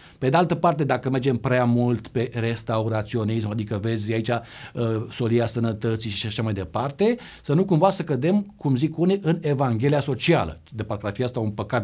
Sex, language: male, Romanian